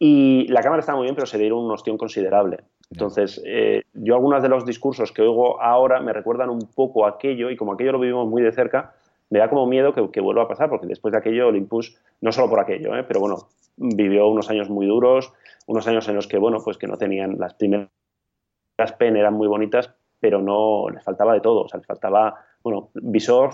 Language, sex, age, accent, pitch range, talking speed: Spanish, male, 20-39, Spanish, 105-130 Hz, 230 wpm